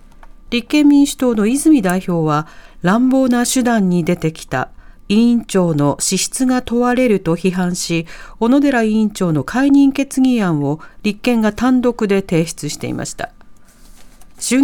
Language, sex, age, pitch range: Japanese, female, 40-59, 175-250 Hz